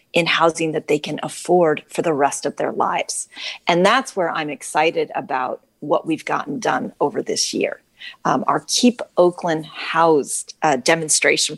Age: 40-59